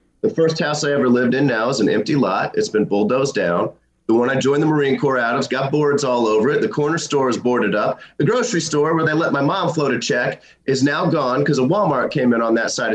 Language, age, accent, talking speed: English, 30-49, American, 275 wpm